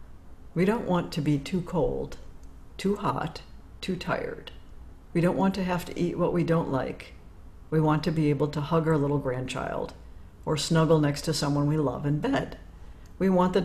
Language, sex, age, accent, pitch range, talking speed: English, female, 60-79, American, 130-170 Hz, 195 wpm